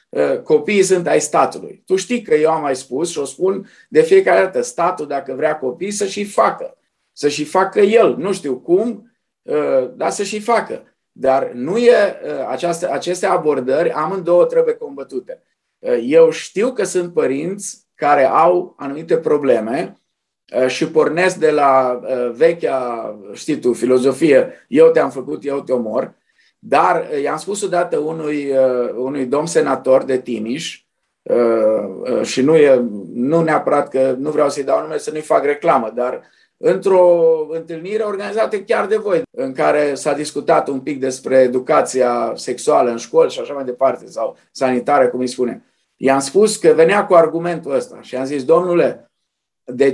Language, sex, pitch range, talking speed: Romanian, male, 140-230 Hz, 155 wpm